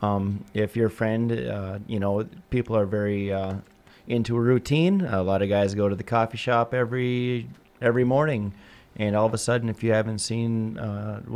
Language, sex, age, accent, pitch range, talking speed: English, male, 30-49, American, 100-115 Hz, 190 wpm